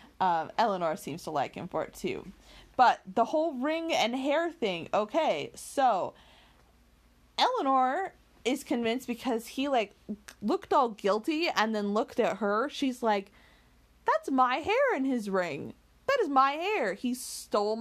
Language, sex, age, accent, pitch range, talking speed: English, female, 20-39, American, 180-245 Hz, 155 wpm